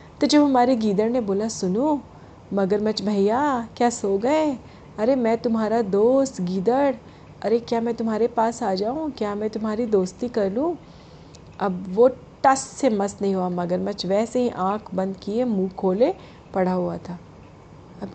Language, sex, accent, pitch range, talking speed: Hindi, female, native, 190-255 Hz, 160 wpm